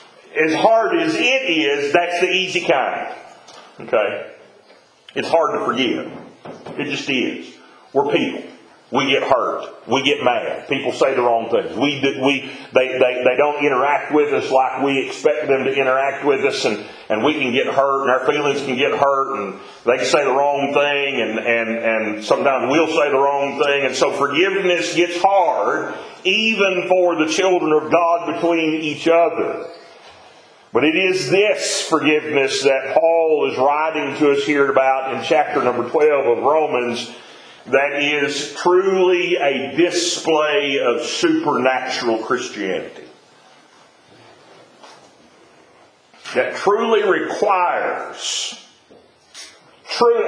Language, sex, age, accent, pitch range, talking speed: English, male, 40-59, American, 135-185 Hz, 145 wpm